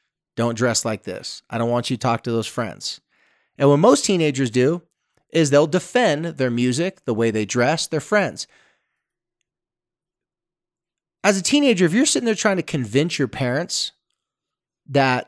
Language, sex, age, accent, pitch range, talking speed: English, male, 30-49, American, 125-175 Hz, 165 wpm